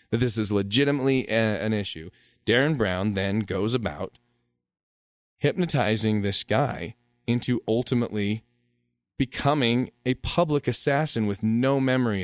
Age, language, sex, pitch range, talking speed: 20-39, English, male, 90-115 Hz, 115 wpm